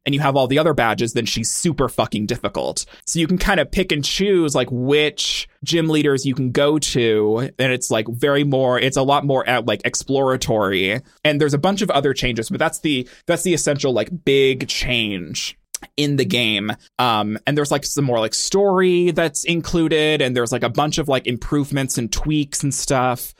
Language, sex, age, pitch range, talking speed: English, male, 20-39, 120-155 Hz, 210 wpm